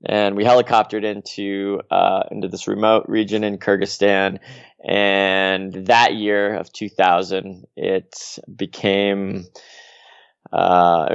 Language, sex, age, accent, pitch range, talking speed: English, male, 20-39, American, 95-105 Hz, 100 wpm